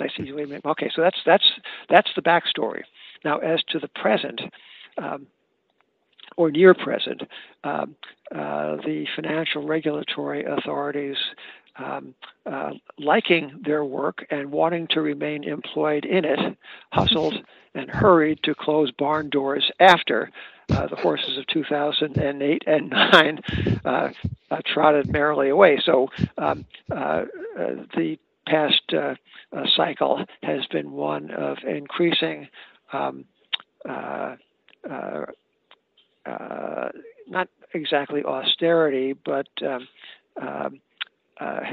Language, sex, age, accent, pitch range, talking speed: English, male, 60-79, American, 140-160 Hz, 110 wpm